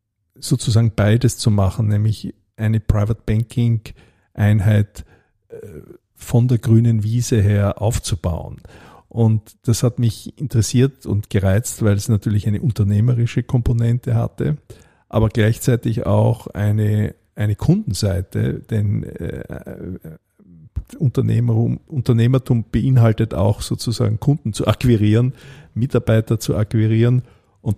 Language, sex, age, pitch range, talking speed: German, male, 50-69, 105-120 Hz, 100 wpm